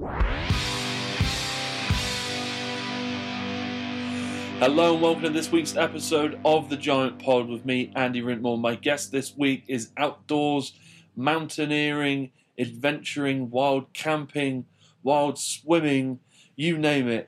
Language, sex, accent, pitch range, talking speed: English, male, British, 115-145 Hz, 105 wpm